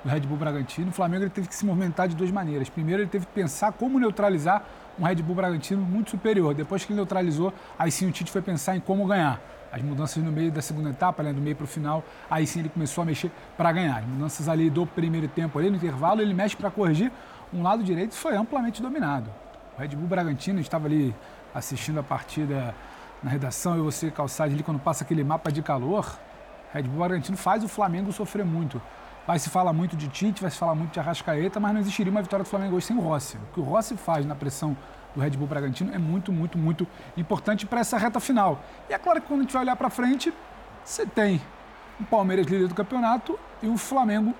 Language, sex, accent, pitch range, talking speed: Portuguese, male, Brazilian, 155-210 Hz, 240 wpm